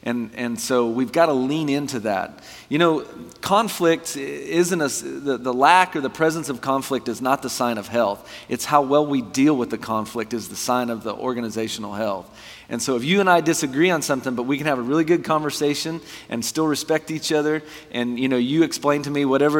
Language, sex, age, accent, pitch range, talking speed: English, male, 40-59, American, 115-145 Hz, 225 wpm